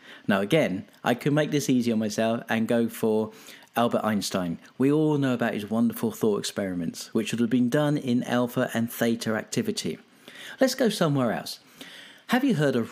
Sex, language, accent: male, English, British